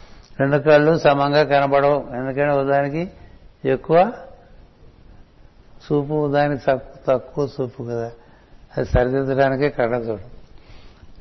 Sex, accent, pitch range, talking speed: male, native, 120-145 Hz, 90 wpm